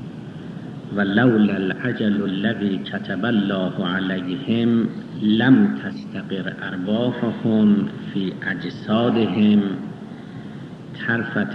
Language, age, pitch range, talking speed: Persian, 50-69, 95-130 Hz, 60 wpm